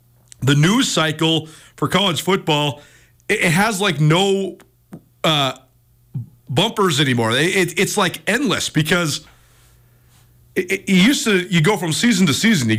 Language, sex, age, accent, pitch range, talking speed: English, male, 40-59, American, 140-180 Hz, 130 wpm